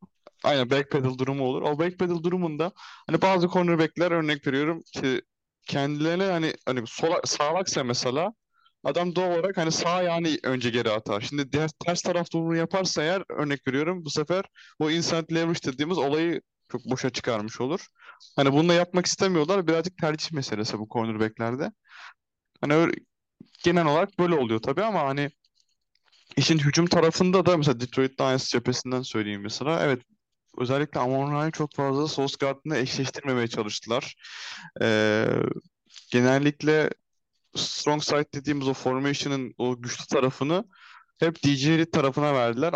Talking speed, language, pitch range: 145 wpm, Turkish, 125-165 Hz